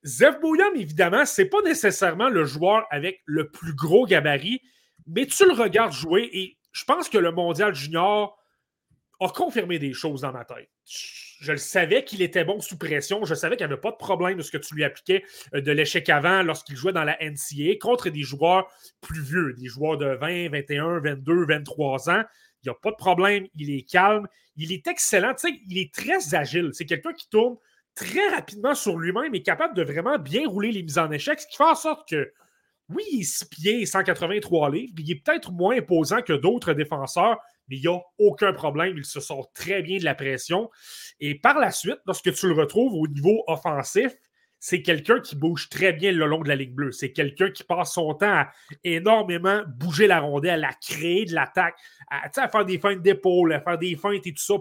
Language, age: French, 30-49